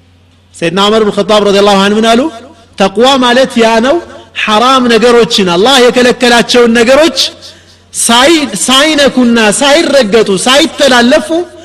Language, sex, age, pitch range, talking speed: Amharic, male, 40-59, 150-245 Hz, 105 wpm